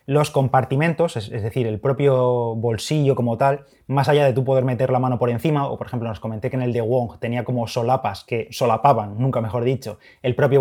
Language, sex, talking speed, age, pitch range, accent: Spanish, male, 220 wpm, 20-39, 120-140 Hz, Spanish